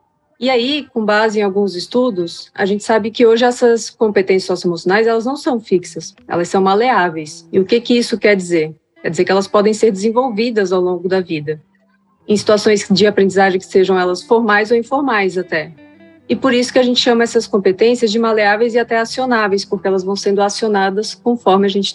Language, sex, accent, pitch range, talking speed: Portuguese, female, Brazilian, 190-230 Hz, 195 wpm